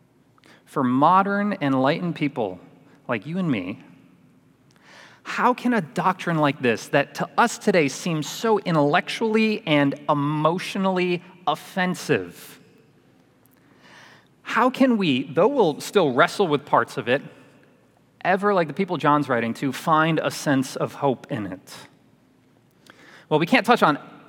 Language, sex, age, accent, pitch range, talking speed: English, male, 30-49, American, 150-195 Hz, 135 wpm